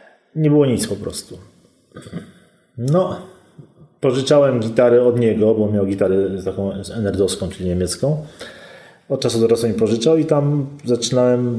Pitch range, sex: 100-120 Hz, male